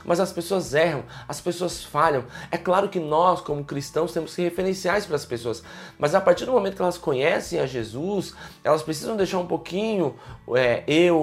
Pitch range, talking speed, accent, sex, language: 145-180 Hz, 185 wpm, Brazilian, male, Portuguese